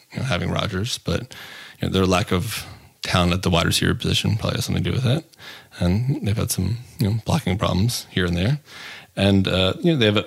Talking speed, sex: 240 wpm, male